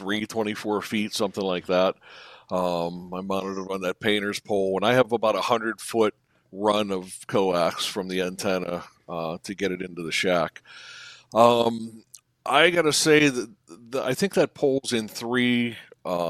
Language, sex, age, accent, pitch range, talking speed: English, male, 60-79, American, 95-120 Hz, 175 wpm